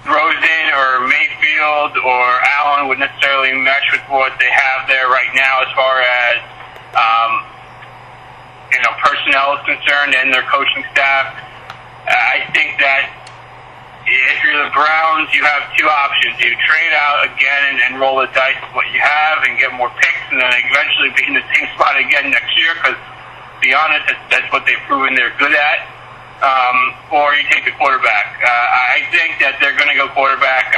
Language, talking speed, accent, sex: English, 185 wpm, American, male